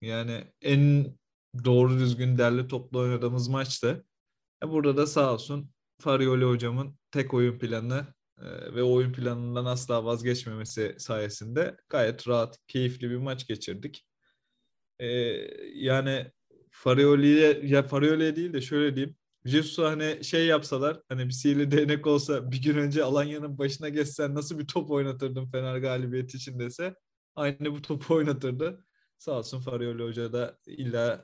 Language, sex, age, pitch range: Turkish, male, 30-49, 120-140 Hz